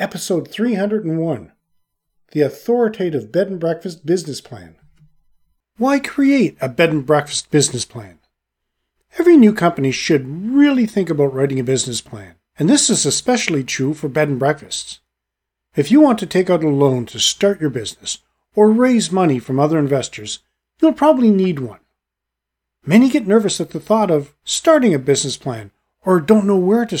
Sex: male